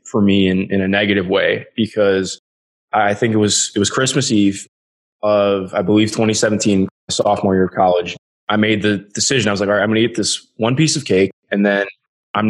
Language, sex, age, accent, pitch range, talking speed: English, male, 20-39, American, 100-115 Hz, 210 wpm